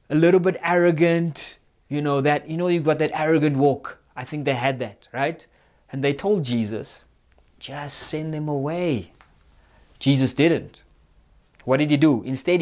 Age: 20-39